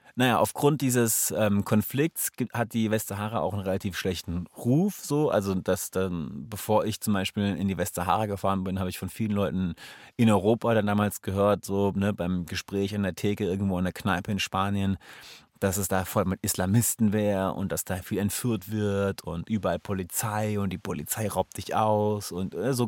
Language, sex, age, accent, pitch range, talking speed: German, male, 30-49, German, 95-115 Hz, 195 wpm